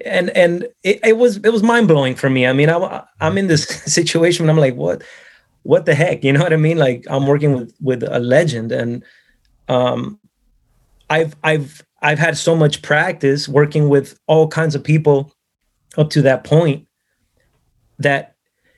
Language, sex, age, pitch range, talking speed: English, male, 30-49, 130-160 Hz, 185 wpm